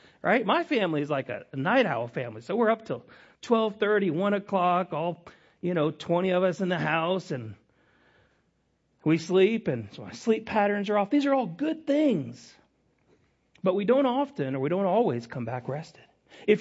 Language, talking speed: English, 195 wpm